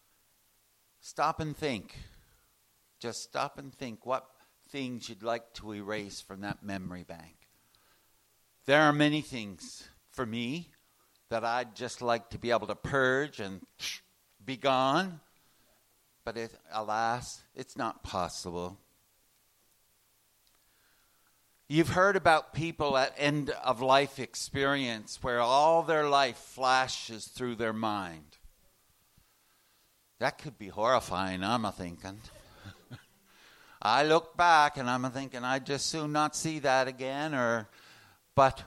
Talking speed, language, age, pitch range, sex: 120 wpm, English, 60-79, 105-145 Hz, male